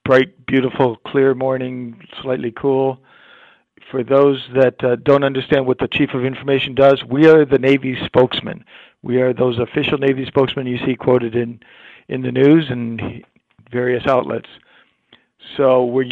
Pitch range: 125-140 Hz